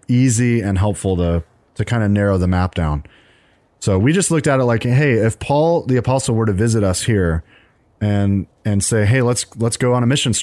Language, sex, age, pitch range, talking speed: English, male, 30-49, 100-125 Hz, 220 wpm